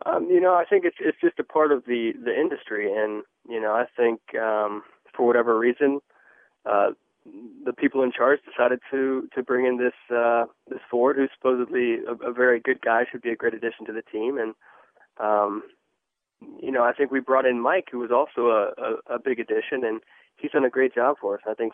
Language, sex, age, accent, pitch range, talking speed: English, male, 20-39, American, 110-145 Hz, 220 wpm